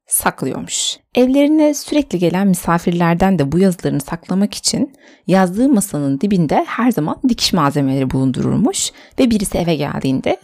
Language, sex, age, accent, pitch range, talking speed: Turkish, female, 30-49, native, 165-245 Hz, 125 wpm